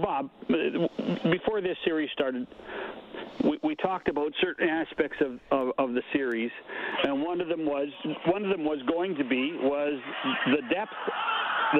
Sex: male